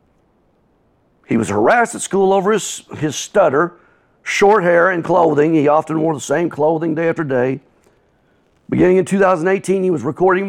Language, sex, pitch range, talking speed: English, male, 140-180 Hz, 160 wpm